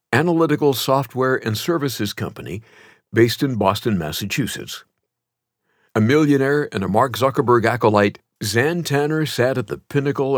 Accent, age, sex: American, 60-79, male